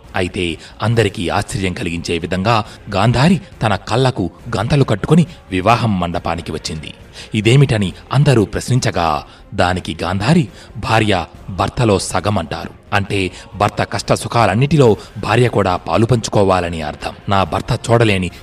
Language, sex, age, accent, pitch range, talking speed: Telugu, male, 30-49, native, 90-120 Hz, 105 wpm